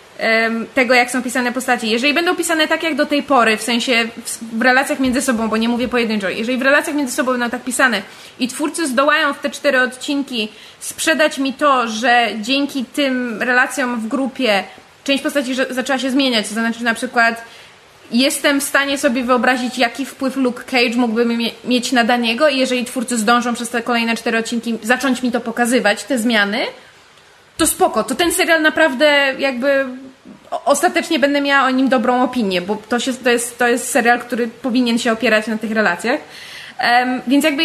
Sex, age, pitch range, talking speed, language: female, 20-39, 235-275 Hz, 180 wpm, Polish